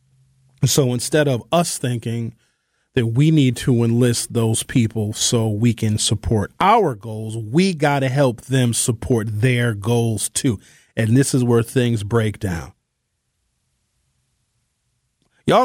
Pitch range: 130-175 Hz